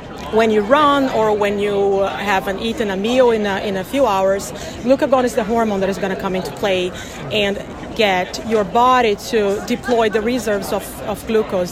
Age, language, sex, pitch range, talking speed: 30-49, English, female, 195-240 Hz, 200 wpm